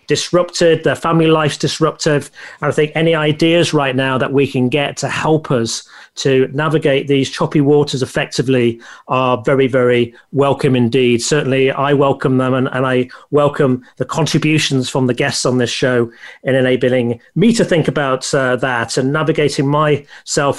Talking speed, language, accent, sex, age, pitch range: 165 wpm, English, British, male, 40-59, 135-165 Hz